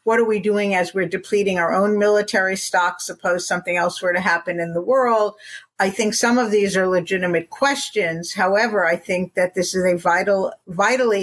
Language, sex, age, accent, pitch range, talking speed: English, female, 50-69, American, 180-205 Hz, 200 wpm